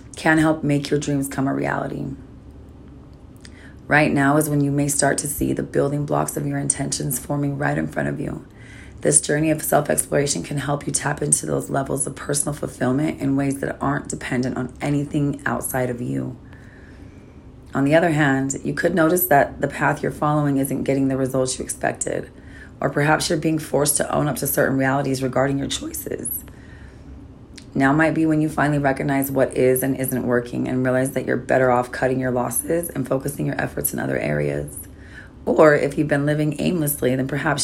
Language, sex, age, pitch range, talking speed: English, female, 30-49, 130-150 Hz, 195 wpm